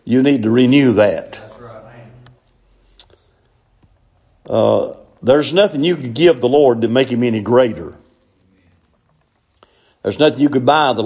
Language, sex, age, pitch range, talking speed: English, male, 50-69, 105-125 Hz, 130 wpm